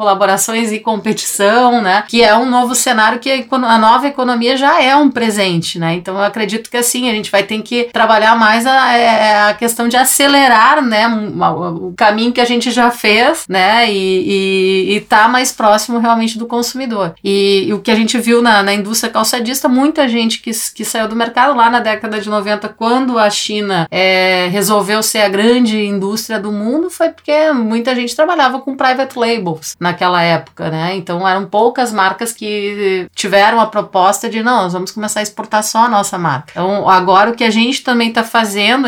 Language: Portuguese